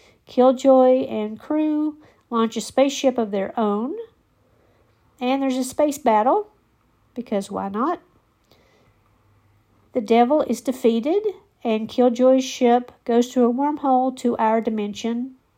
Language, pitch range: English, 205-255 Hz